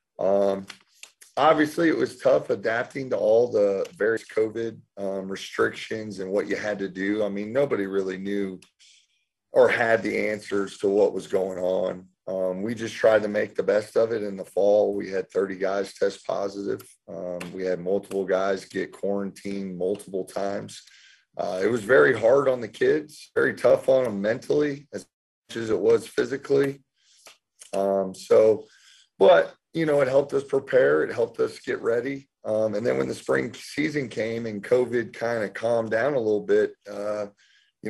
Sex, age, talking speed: male, 30-49, 180 wpm